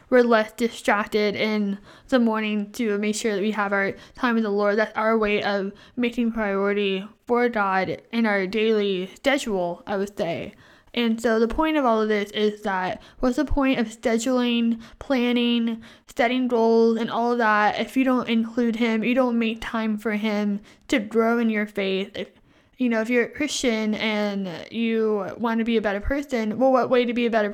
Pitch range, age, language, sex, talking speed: 210-245 Hz, 10-29, English, female, 200 wpm